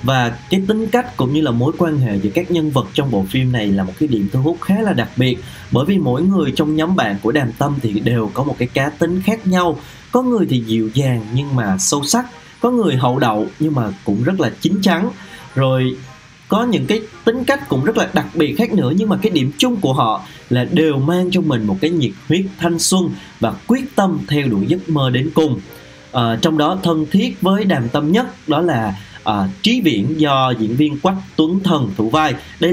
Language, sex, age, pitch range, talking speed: Vietnamese, male, 20-39, 120-180 Hz, 240 wpm